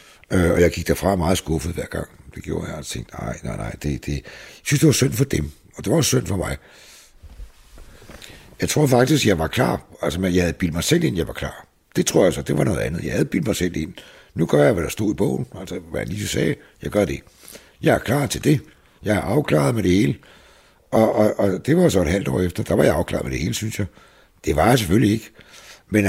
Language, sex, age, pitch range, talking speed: Danish, male, 60-79, 85-110 Hz, 265 wpm